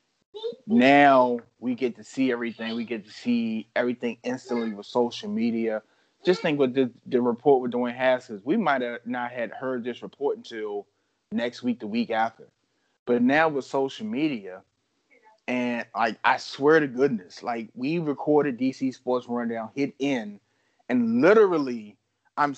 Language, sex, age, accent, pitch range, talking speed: English, male, 30-49, American, 120-140 Hz, 160 wpm